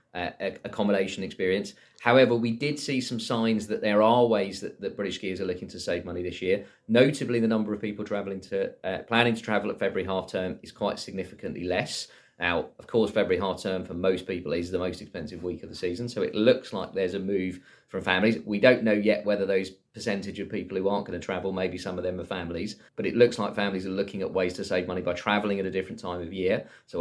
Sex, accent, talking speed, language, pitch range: male, British, 245 wpm, English, 95-110 Hz